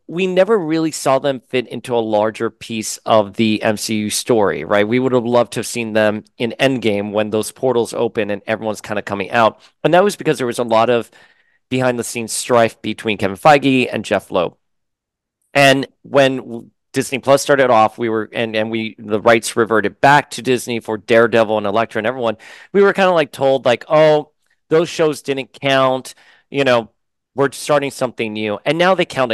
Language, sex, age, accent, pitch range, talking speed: English, male, 40-59, American, 110-140 Hz, 205 wpm